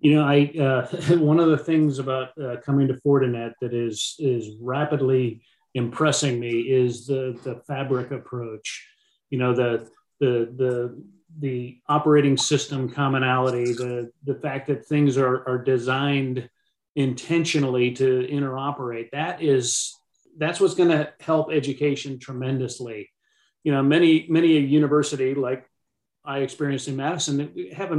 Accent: American